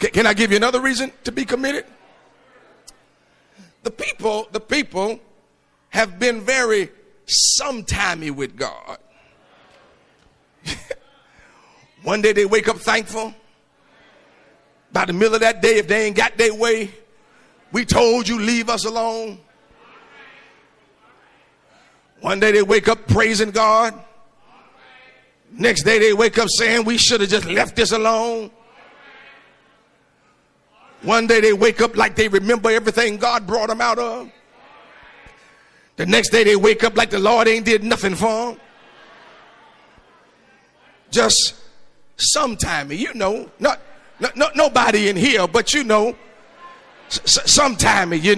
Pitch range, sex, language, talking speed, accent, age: 215-240 Hz, male, English, 135 wpm, American, 50-69